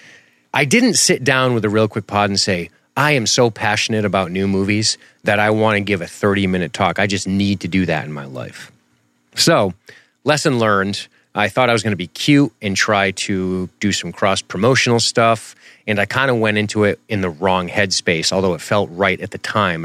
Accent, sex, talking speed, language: American, male, 215 wpm, English